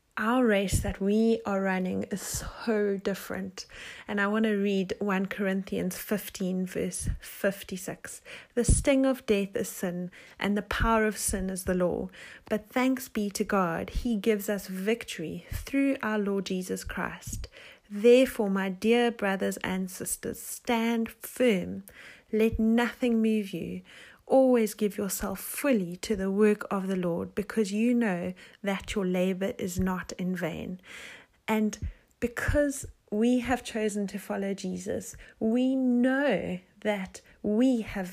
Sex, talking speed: female, 145 wpm